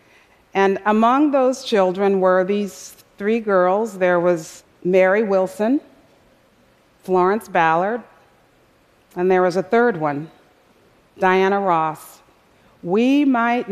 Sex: female